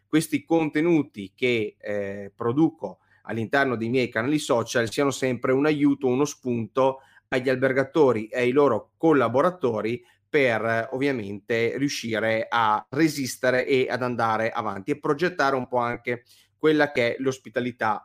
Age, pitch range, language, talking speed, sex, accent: 30-49, 115-145 Hz, Italian, 135 wpm, male, native